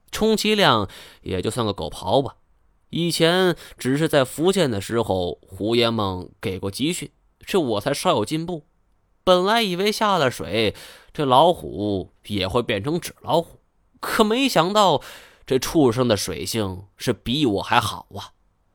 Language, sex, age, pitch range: Chinese, male, 20-39, 95-160 Hz